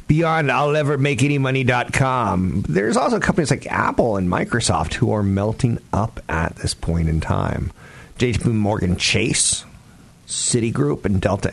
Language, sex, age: English, male, 50-69